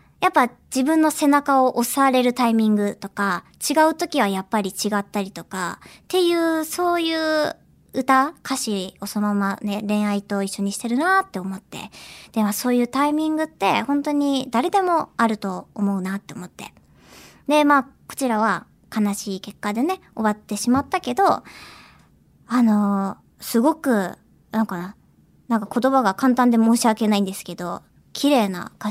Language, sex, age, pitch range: Japanese, male, 20-39, 195-270 Hz